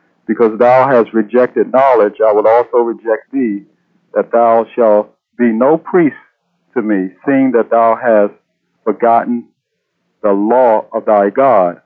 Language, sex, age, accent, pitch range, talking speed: English, male, 50-69, American, 110-135 Hz, 140 wpm